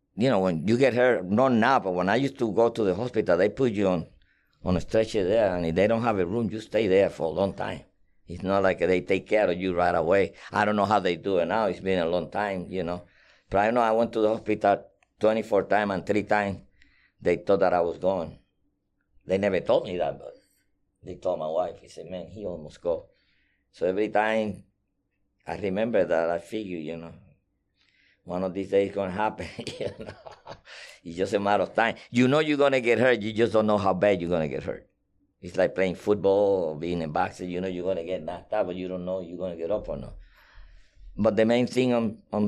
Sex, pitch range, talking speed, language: male, 90-110 Hz, 250 wpm, English